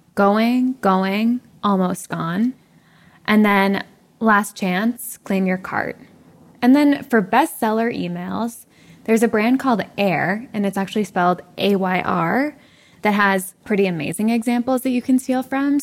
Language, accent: English, American